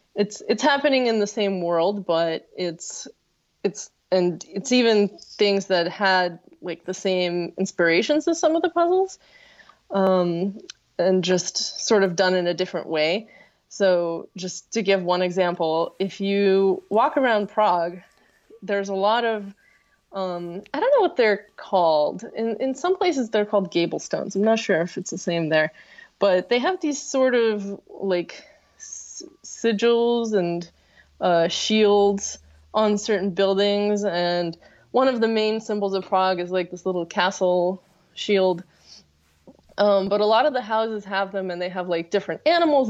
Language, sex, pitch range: English, female, 180-220 Hz